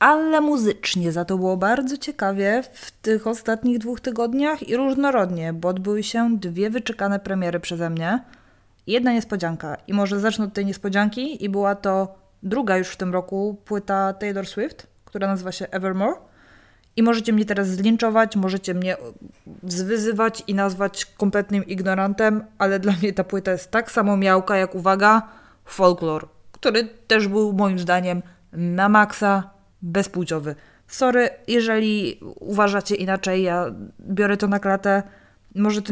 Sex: female